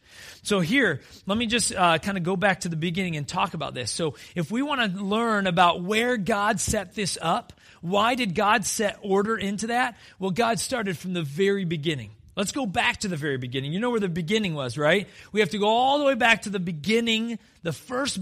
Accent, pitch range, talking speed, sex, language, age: American, 160-225 Hz, 225 wpm, male, English, 30-49